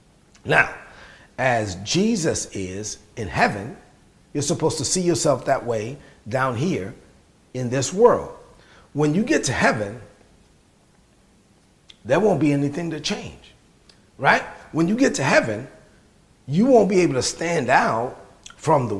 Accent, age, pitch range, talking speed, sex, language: American, 40-59, 135-175 Hz, 140 wpm, male, English